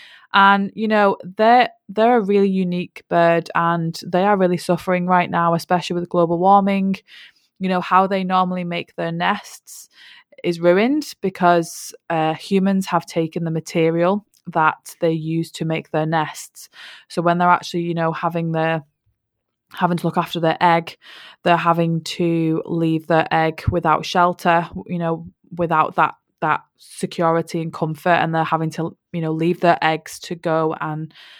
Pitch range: 165-180 Hz